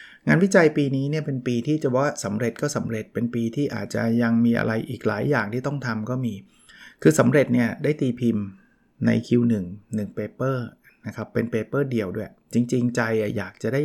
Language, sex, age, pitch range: Thai, male, 20-39, 110-135 Hz